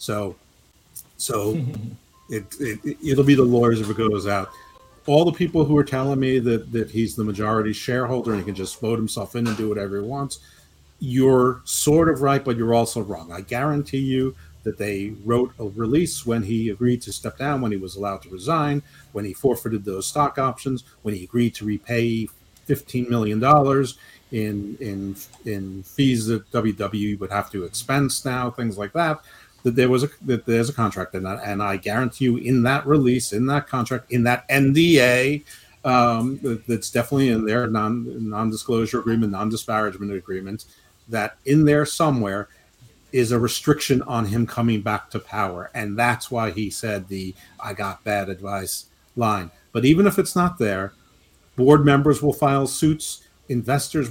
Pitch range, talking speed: 105-135 Hz, 180 wpm